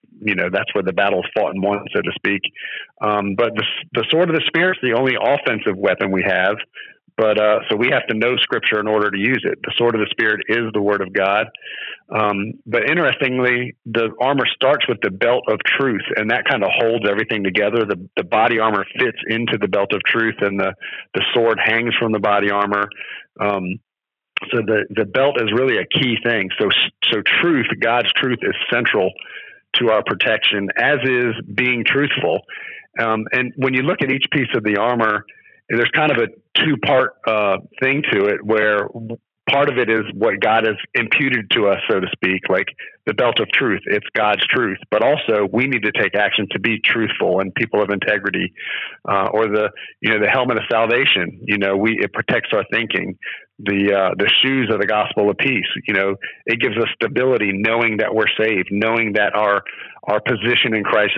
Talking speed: 205 wpm